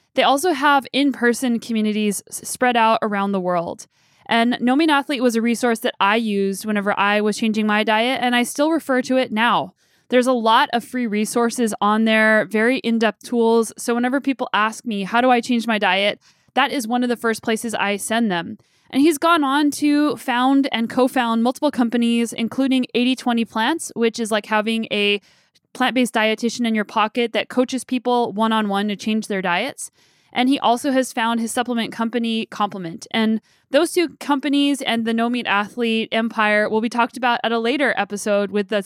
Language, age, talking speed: English, 10-29, 190 wpm